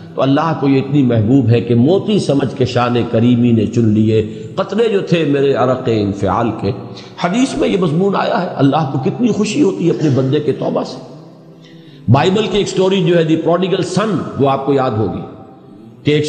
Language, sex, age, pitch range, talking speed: Urdu, male, 50-69, 120-160 Hz, 205 wpm